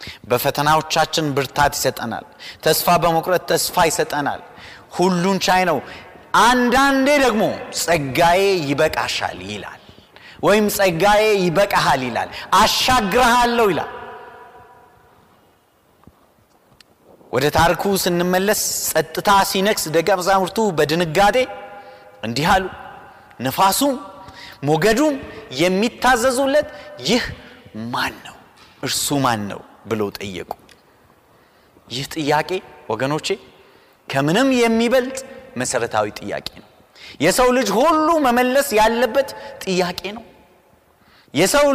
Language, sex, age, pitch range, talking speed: Amharic, male, 30-49, 165-250 Hz, 80 wpm